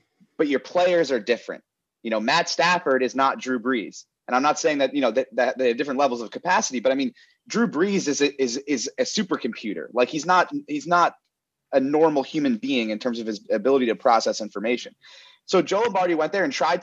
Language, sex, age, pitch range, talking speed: English, male, 30-49, 140-210 Hz, 220 wpm